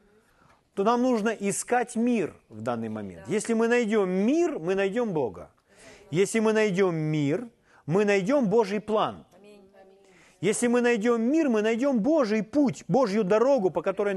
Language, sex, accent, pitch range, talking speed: Ukrainian, male, native, 140-215 Hz, 150 wpm